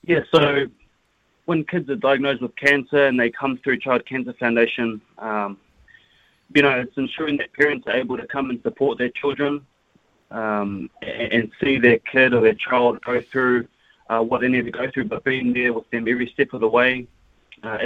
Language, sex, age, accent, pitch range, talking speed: English, male, 20-39, Australian, 115-130 Hz, 195 wpm